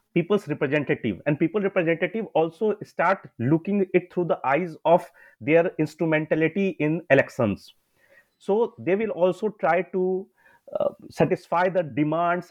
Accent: Indian